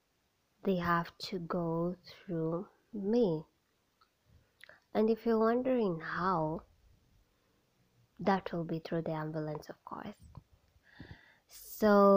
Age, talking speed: 20-39, 100 wpm